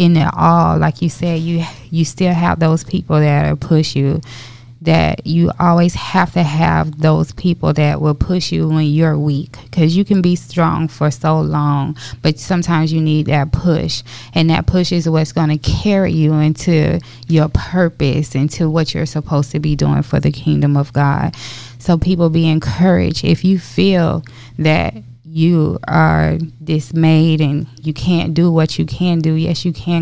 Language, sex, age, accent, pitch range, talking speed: English, female, 20-39, American, 150-170 Hz, 180 wpm